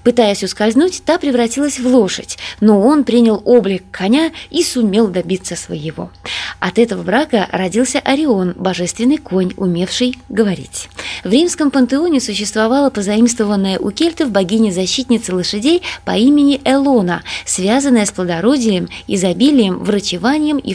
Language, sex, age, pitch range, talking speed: Russian, female, 20-39, 190-260 Hz, 120 wpm